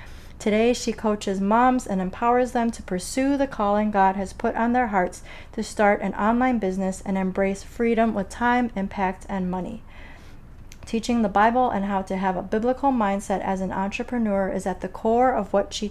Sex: female